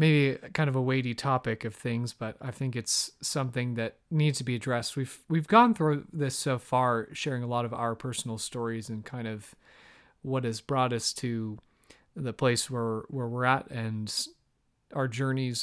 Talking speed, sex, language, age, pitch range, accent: 190 wpm, male, English, 30-49, 120-155 Hz, American